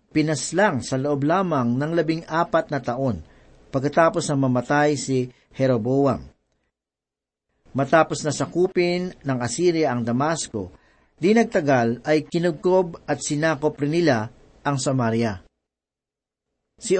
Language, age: Filipino, 50-69